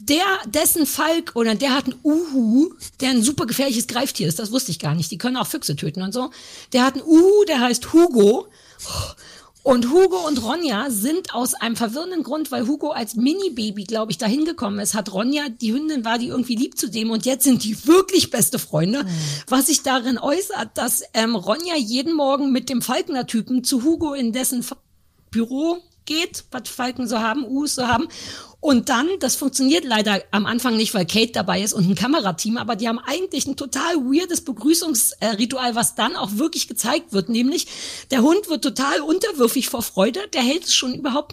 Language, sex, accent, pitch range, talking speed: German, female, German, 235-315 Hz, 200 wpm